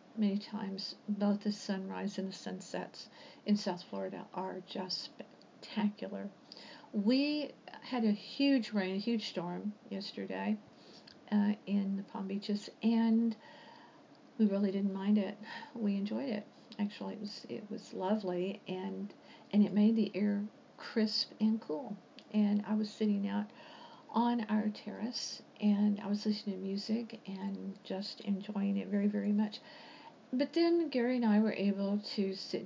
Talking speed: 150 wpm